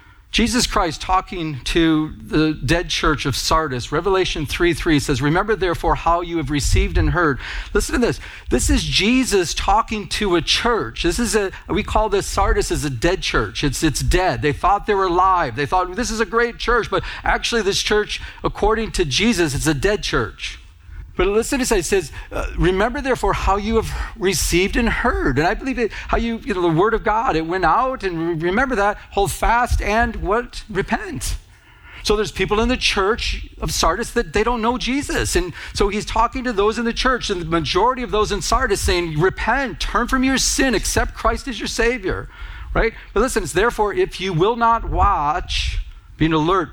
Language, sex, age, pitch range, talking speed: English, male, 50-69, 155-225 Hz, 200 wpm